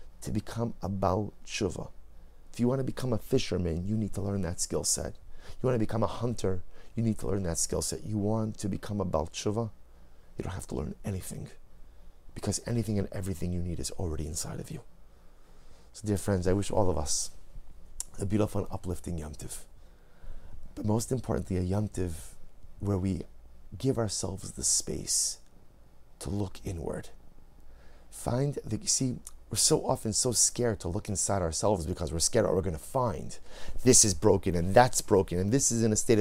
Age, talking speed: 30-49, 195 wpm